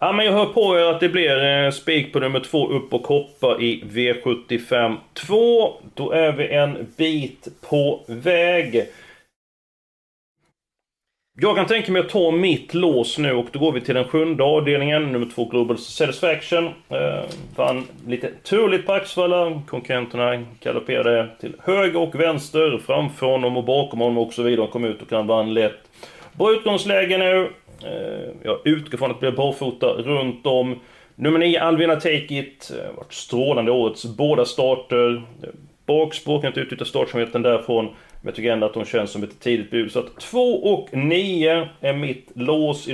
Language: Swedish